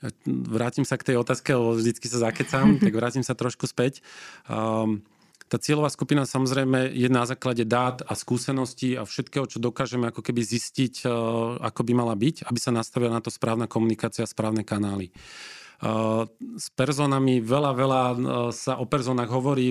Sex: male